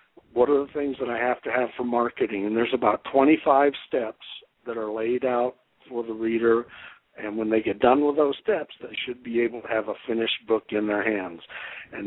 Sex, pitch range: male, 115-140 Hz